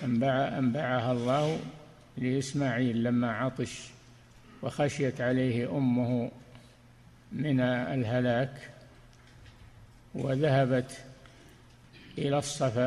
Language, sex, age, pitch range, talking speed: Arabic, male, 60-79, 125-140 Hz, 65 wpm